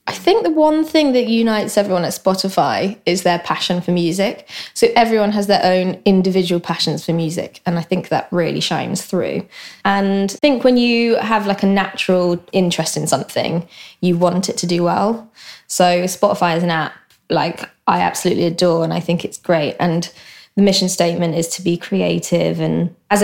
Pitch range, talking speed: 175-200 Hz, 190 wpm